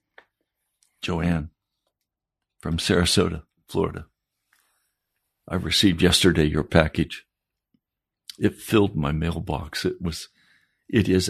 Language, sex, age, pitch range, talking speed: English, male, 60-79, 80-95 Hz, 90 wpm